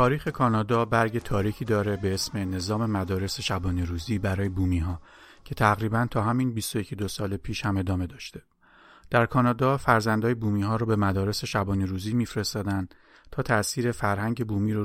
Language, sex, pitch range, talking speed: Persian, male, 100-120 Hz, 160 wpm